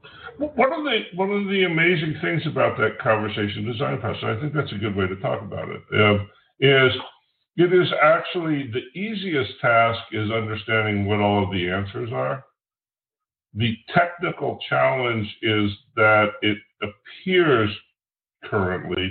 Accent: American